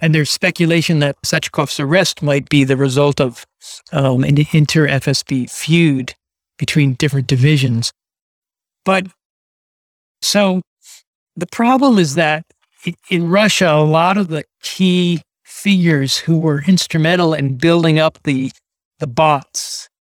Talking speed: 125 wpm